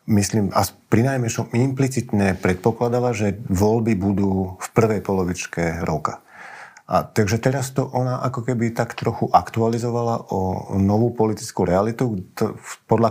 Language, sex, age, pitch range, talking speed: Slovak, male, 50-69, 95-120 Hz, 125 wpm